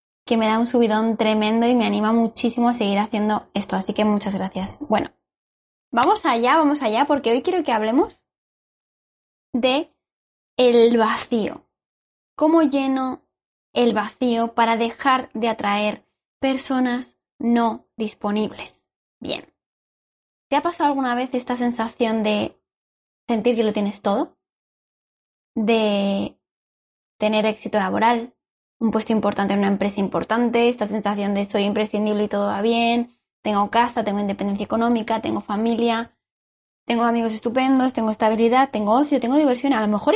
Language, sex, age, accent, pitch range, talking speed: Spanish, female, 10-29, Spanish, 215-255 Hz, 140 wpm